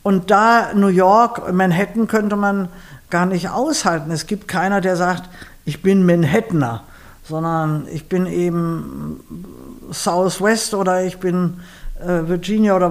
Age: 50-69